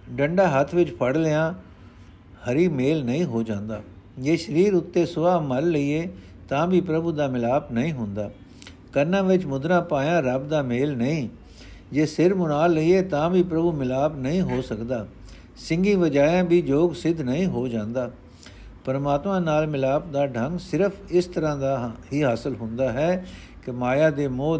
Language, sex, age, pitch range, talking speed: Punjabi, male, 60-79, 120-170 Hz, 165 wpm